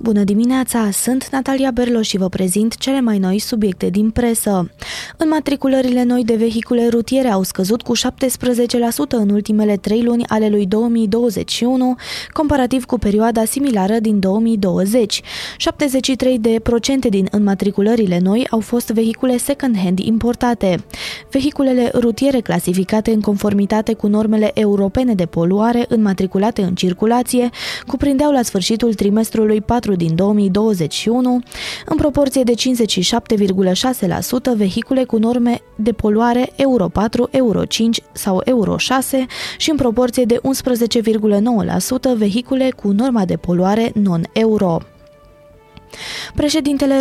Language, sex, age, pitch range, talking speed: Romanian, female, 20-39, 205-250 Hz, 120 wpm